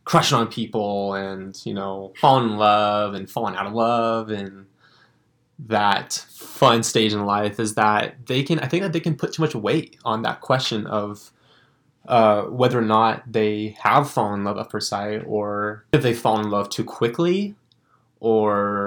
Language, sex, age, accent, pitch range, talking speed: English, male, 20-39, American, 105-130 Hz, 185 wpm